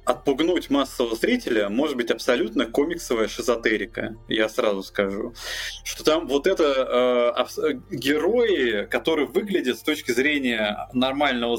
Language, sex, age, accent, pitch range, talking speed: Russian, male, 20-39, native, 110-140 Hz, 120 wpm